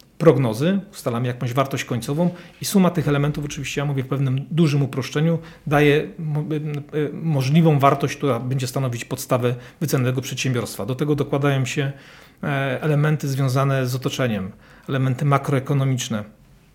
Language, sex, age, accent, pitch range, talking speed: Polish, male, 40-59, native, 130-160 Hz, 125 wpm